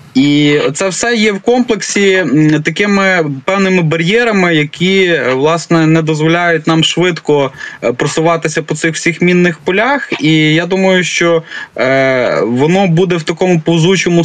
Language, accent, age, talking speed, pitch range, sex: Ukrainian, native, 20-39, 125 wpm, 140-175 Hz, male